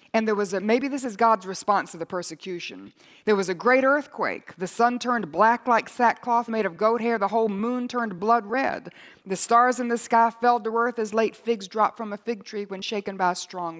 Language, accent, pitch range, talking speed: English, American, 185-230 Hz, 235 wpm